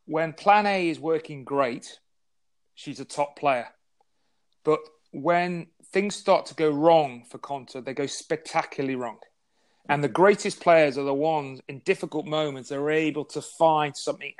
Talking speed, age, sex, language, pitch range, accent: 165 wpm, 30-49, male, English, 145-165 Hz, British